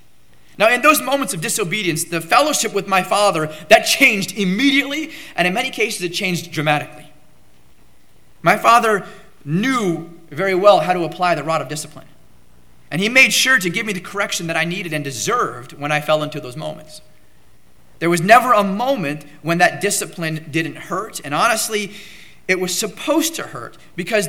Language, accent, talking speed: English, American, 175 wpm